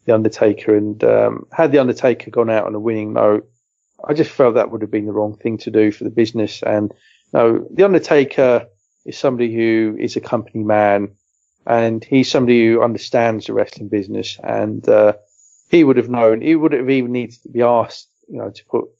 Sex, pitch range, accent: male, 105-120 Hz, British